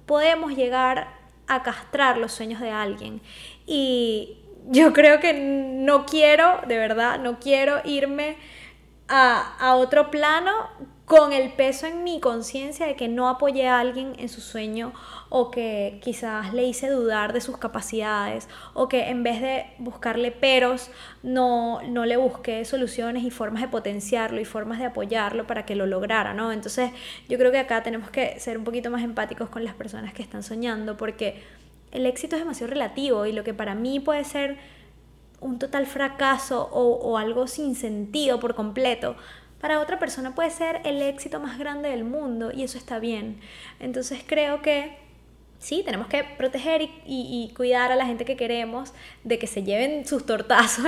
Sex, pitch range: female, 230-275 Hz